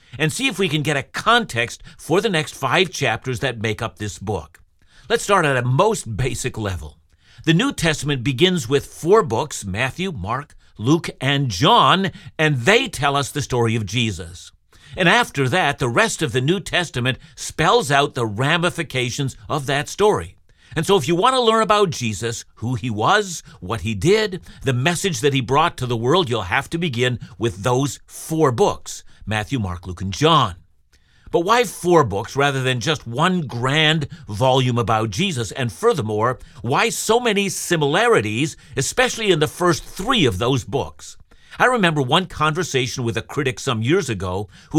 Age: 50-69